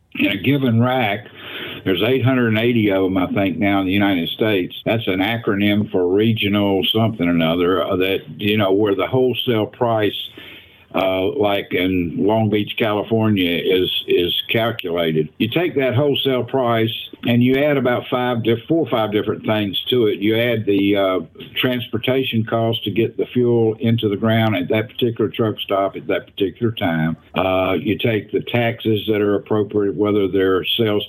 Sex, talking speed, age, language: male, 175 wpm, 60-79, English